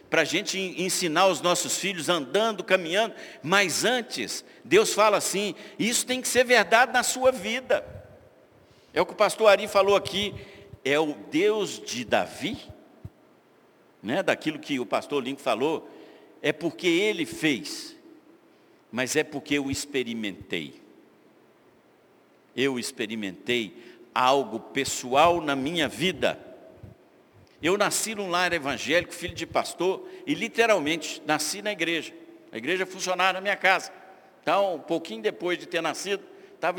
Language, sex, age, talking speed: Portuguese, male, 60-79, 140 wpm